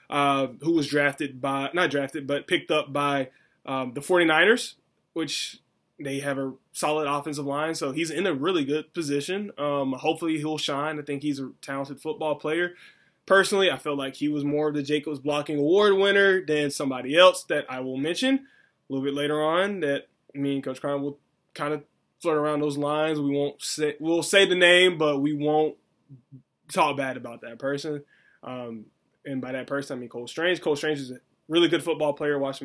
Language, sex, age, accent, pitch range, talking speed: English, male, 20-39, American, 140-160 Hz, 200 wpm